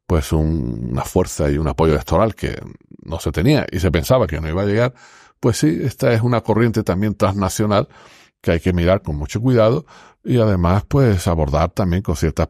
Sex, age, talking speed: male, 50-69, 200 wpm